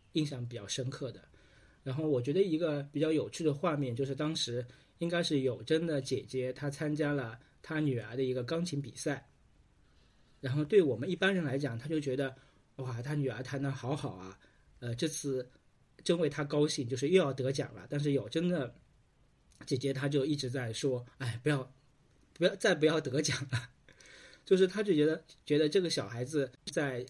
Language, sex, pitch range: Chinese, male, 125-150 Hz